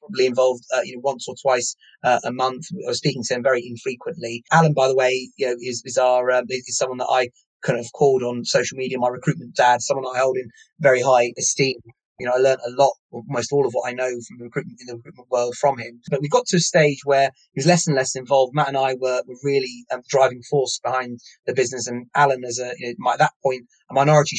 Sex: male